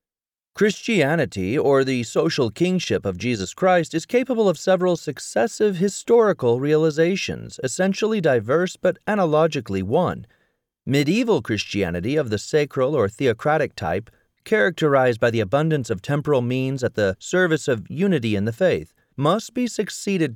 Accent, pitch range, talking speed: American, 110-155 Hz, 135 wpm